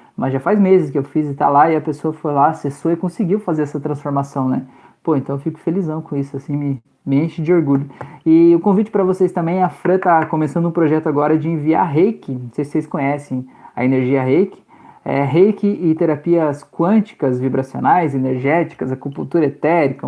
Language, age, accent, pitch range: Portuguese, 20-39, Brazilian, 145-180 Hz